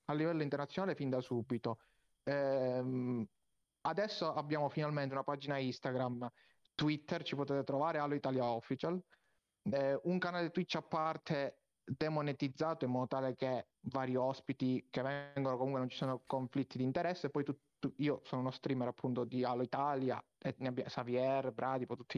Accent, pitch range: native, 130-155 Hz